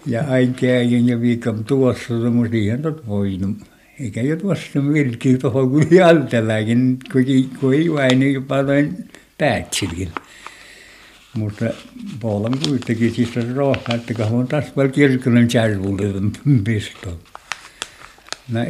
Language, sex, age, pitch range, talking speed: Finnish, male, 60-79, 110-130 Hz, 120 wpm